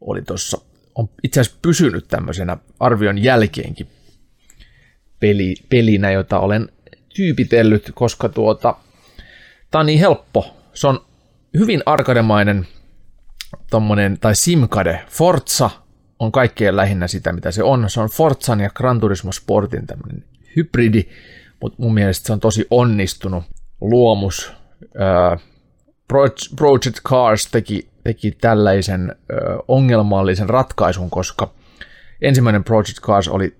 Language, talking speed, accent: Finnish, 110 wpm, native